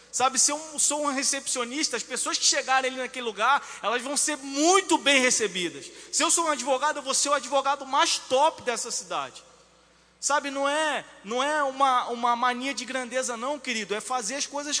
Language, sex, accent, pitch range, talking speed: Portuguese, male, Brazilian, 225-290 Hz, 195 wpm